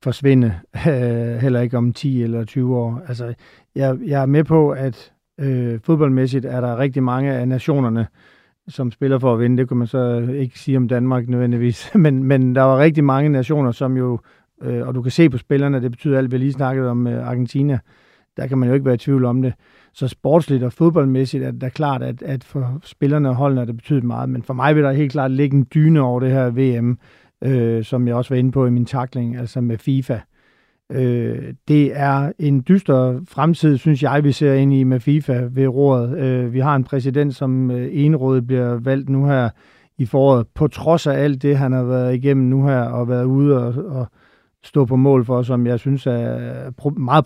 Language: Danish